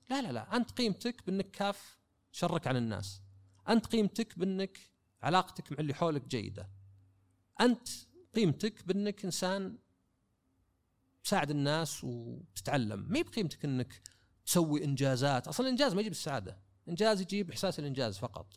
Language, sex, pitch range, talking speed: Arabic, male, 110-175 Hz, 130 wpm